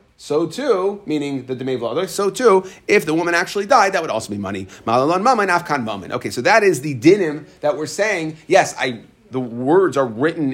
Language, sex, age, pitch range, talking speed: English, male, 30-49, 120-165 Hz, 210 wpm